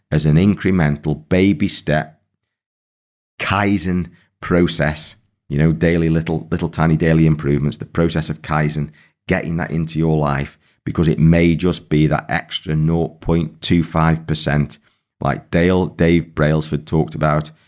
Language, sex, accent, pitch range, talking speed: English, male, British, 75-85 Hz, 130 wpm